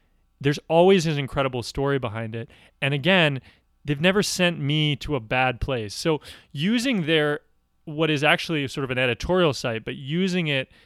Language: English